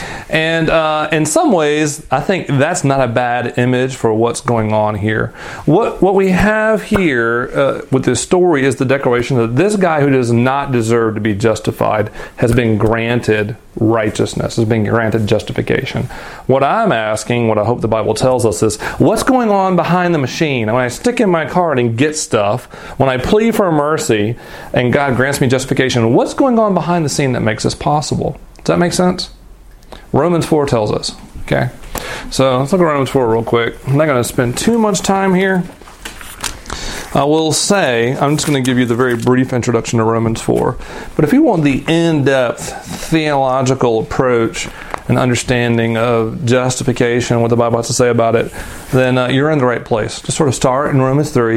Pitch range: 115-155 Hz